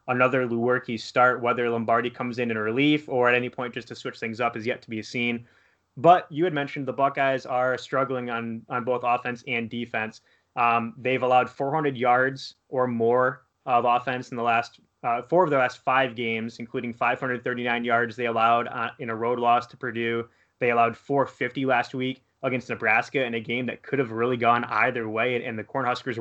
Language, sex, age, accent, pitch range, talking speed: English, male, 20-39, American, 115-130 Hz, 205 wpm